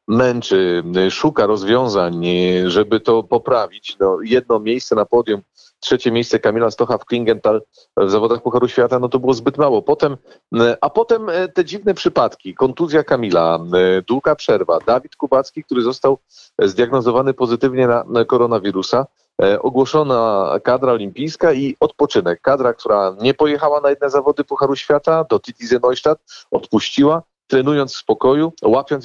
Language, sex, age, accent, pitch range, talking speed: Polish, male, 40-59, native, 115-155 Hz, 135 wpm